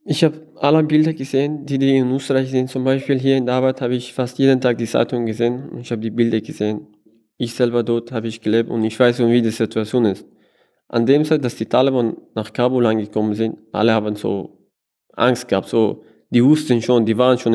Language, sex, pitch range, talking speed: German, male, 105-120 Hz, 220 wpm